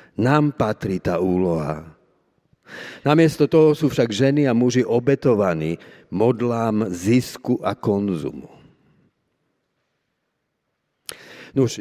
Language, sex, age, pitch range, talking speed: Slovak, male, 50-69, 110-135 Hz, 85 wpm